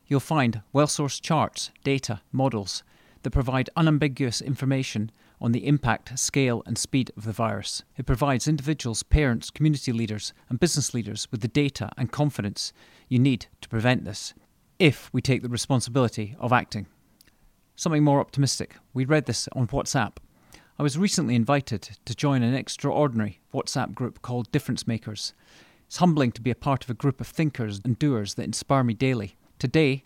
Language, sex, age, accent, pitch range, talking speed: English, male, 40-59, British, 110-140 Hz, 170 wpm